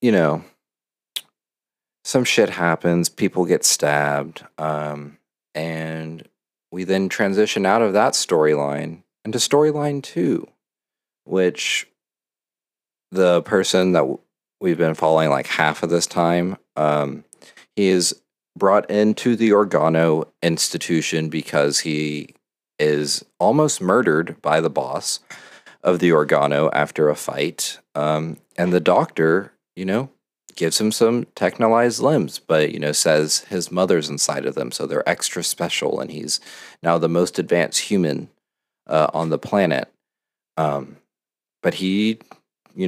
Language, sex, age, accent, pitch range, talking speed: English, male, 40-59, American, 75-90 Hz, 130 wpm